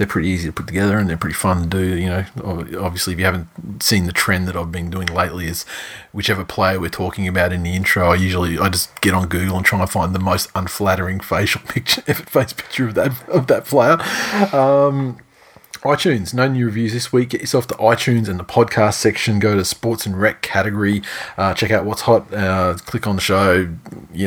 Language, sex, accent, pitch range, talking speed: English, male, Australian, 95-115 Hz, 225 wpm